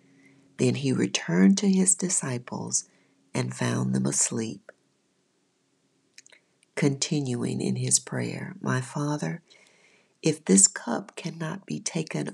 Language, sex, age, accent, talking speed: English, female, 50-69, American, 105 wpm